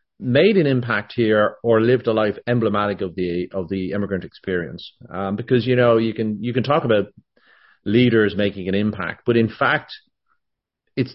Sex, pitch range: male, 95-115 Hz